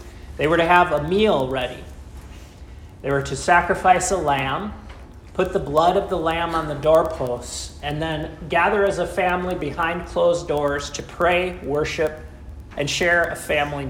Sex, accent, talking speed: male, American, 165 wpm